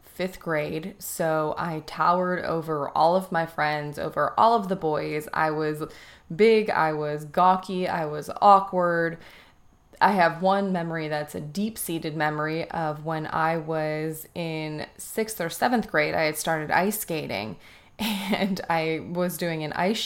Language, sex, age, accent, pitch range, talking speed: English, female, 20-39, American, 155-190 Hz, 155 wpm